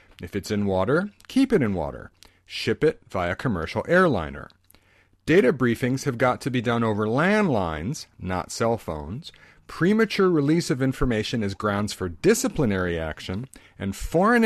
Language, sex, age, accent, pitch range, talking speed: English, male, 50-69, American, 100-155 Hz, 150 wpm